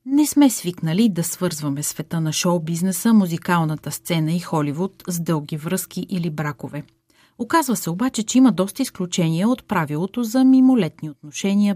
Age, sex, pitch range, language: 30-49, female, 165-220 Hz, Bulgarian